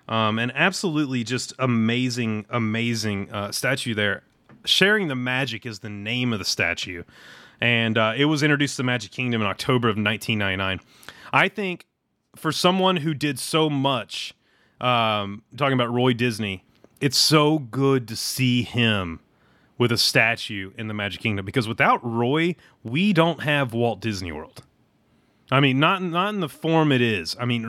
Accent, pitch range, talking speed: American, 110-145 Hz, 165 wpm